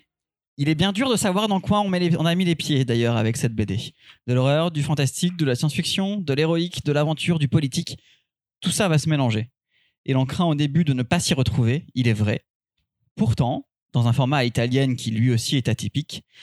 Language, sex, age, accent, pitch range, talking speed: French, male, 20-39, French, 125-165 Hz, 225 wpm